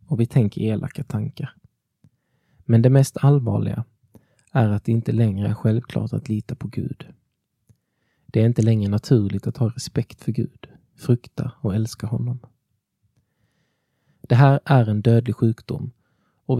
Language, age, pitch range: Swedish, 20-39, 105-130 Hz